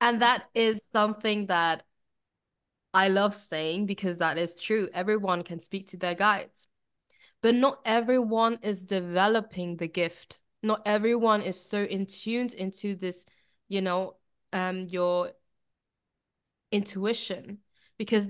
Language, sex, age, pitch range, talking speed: German, female, 20-39, 195-255 Hz, 130 wpm